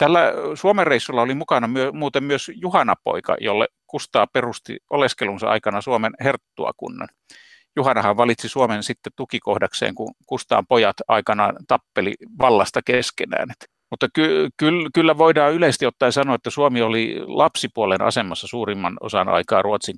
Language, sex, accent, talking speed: Finnish, male, native, 130 wpm